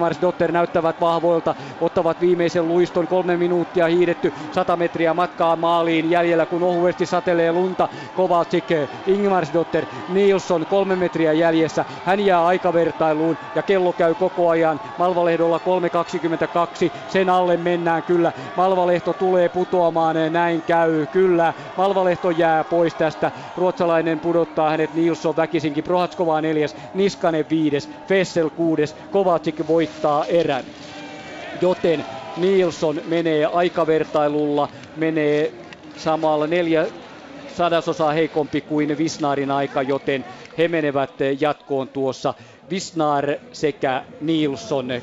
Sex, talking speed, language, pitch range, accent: male, 110 wpm, Finnish, 155-175 Hz, native